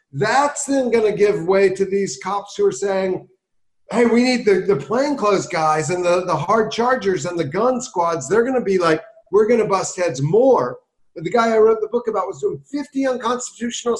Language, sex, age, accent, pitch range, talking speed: English, male, 40-59, American, 175-230 Hz, 205 wpm